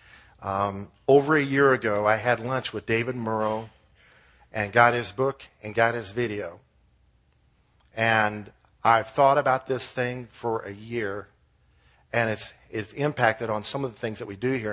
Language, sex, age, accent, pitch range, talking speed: English, male, 50-69, American, 100-125 Hz, 165 wpm